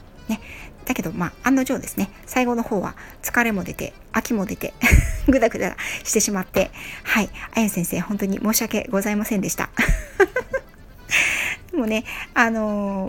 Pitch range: 190-250 Hz